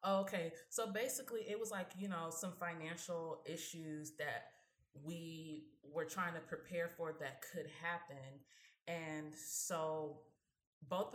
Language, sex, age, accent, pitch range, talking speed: English, female, 20-39, American, 150-180 Hz, 130 wpm